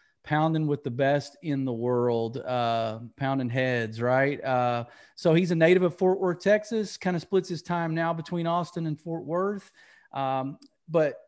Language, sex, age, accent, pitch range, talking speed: English, male, 30-49, American, 130-165 Hz, 175 wpm